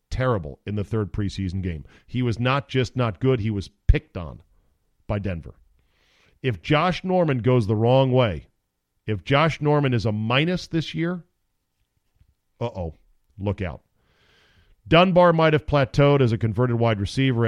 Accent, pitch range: American, 105-140 Hz